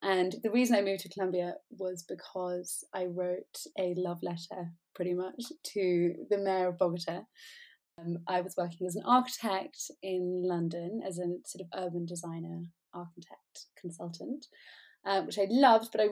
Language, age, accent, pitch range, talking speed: English, 20-39, British, 175-210 Hz, 165 wpm